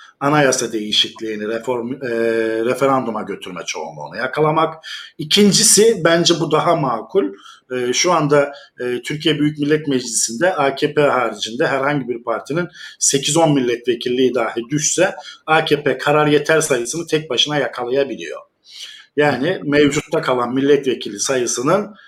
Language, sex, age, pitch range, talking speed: German, male, 50-69, 125-165 Hz, 115 wpm